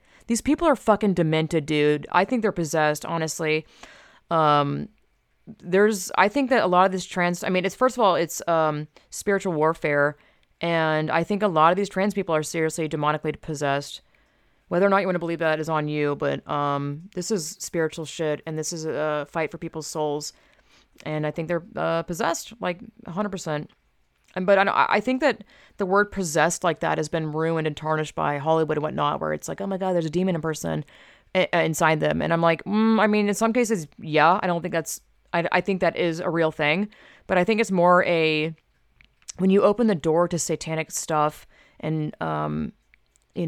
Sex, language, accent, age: female, English, American, 30-49